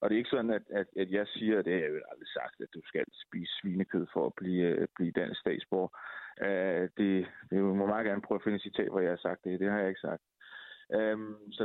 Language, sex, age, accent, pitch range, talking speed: Danish, male, 30-49, native, 105-150 Hz, 245 wpm